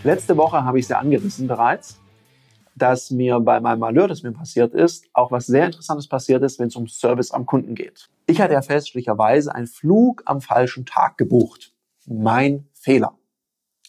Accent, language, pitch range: German, German, 120-165 Hz